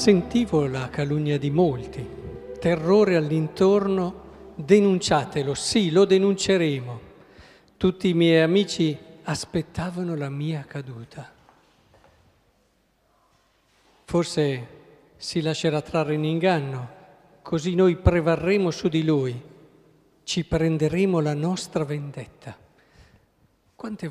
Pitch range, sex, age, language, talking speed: 150-190 Hz, male, 50-69, Italian, 90 wpm